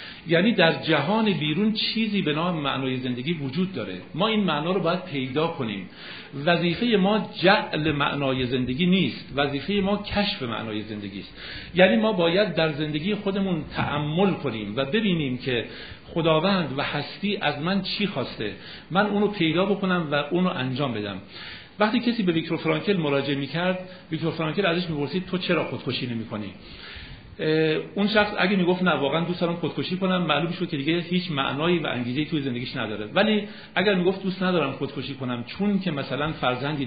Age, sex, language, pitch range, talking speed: 50-69, male, Persian, 135-185 Hz, 165 wpm